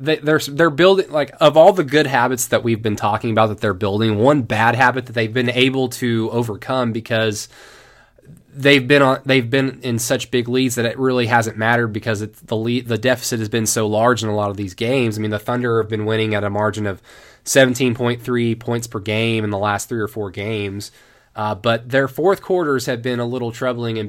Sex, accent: male, American